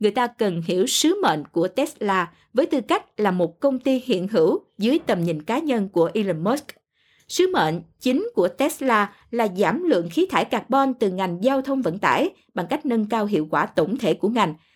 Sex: female